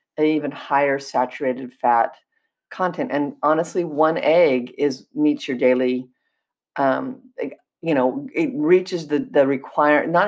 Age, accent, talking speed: 50-69, American, 135 wpm